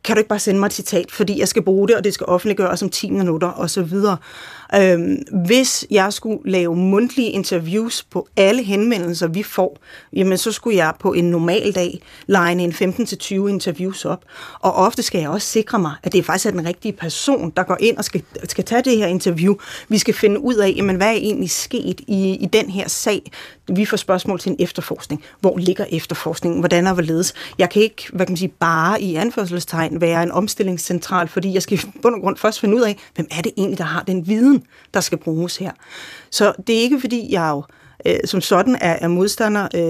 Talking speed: 220 wpm